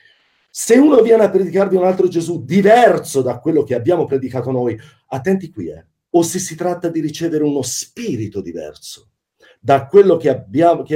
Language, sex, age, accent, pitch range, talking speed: Italian, male, 40-59, native, 115-180 Hz, 170 wpm